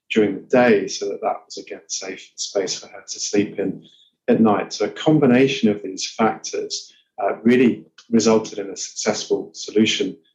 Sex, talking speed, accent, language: male, 175 wpm, British, English